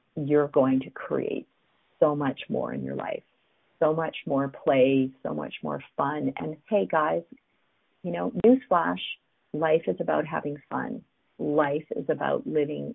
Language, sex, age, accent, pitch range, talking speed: English, female, 40-59, American, 135-185 Hz, 155 wpm